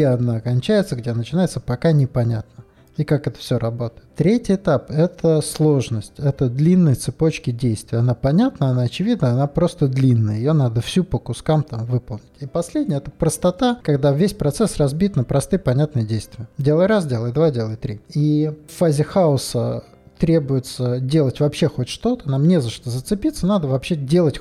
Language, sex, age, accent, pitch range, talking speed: Russian, male, 20-39, native, 125-160 Hz, 170 wpm